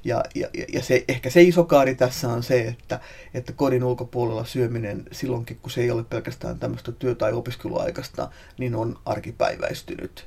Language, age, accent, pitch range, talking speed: Finnish, 30-49, native, 120-135 Hz, 150 wpm